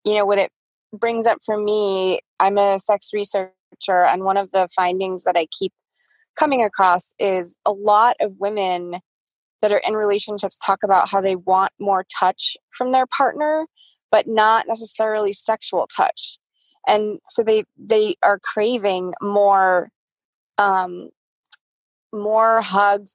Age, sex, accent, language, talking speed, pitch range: 20-39, female, American, English, 145 wpm, 195-250 Hz